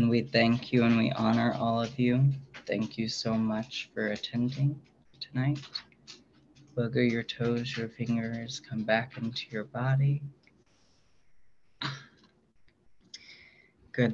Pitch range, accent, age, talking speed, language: 110-130 Hz, American, 30-49, 120 wpm, English